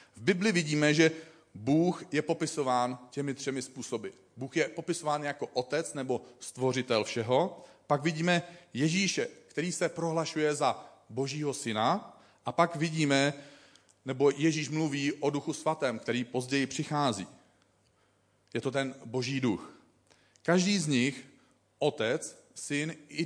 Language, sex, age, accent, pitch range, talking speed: Czech, male, 40-59, native, 120-165 Hz, 130 wpm